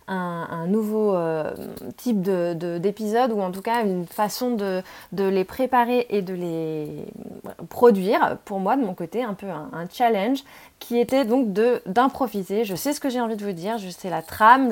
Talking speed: 205 wpm